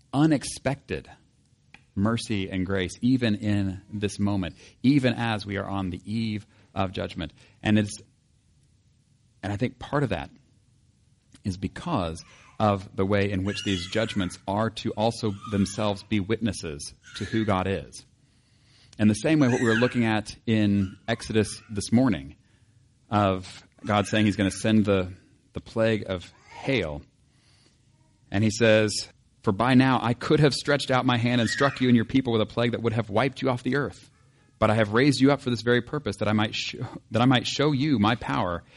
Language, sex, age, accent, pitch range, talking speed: English, male, 40-59, American, 100-125 Hz, 180 wpm